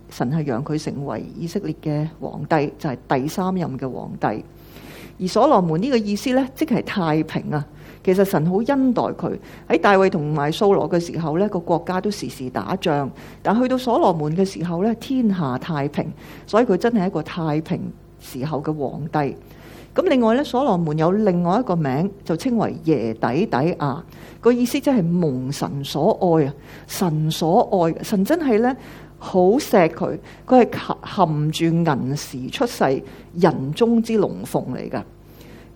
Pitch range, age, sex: 155-205 Hz, 50-69, female